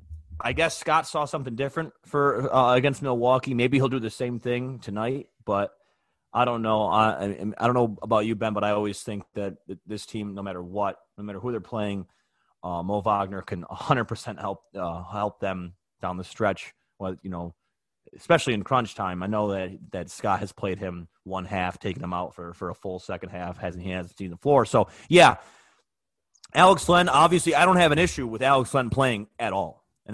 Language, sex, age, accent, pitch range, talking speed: English, male, 30-49, American, 95-130 Hz, 210 wpm